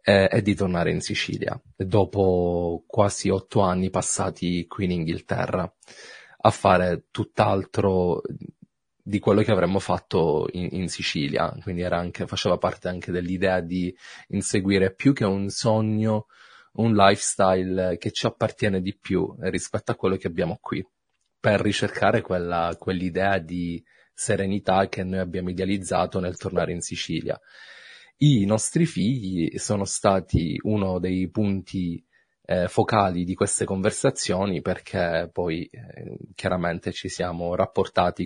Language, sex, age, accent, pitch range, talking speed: Italian, male, 30-49, native, 90-105 Hz, 130 wpm